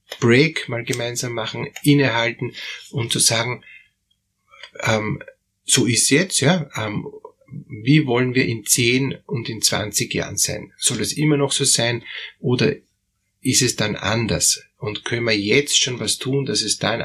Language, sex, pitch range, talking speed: German, male, 115-140 Hz, 160 wpm